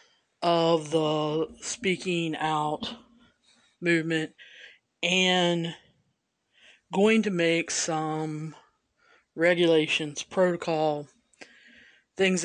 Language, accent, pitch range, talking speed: English, American, 155-210 Hz, 65 wpm